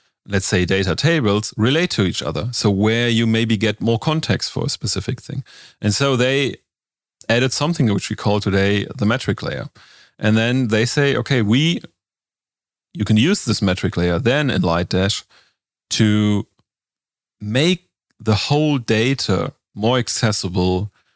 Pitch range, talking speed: 100-125 Hz, 150 wpm